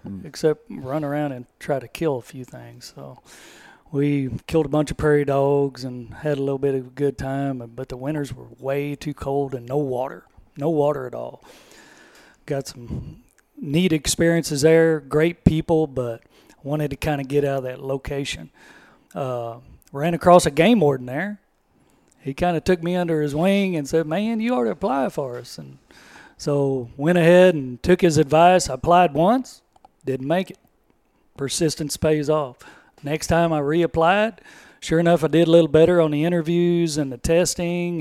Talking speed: 185 wpm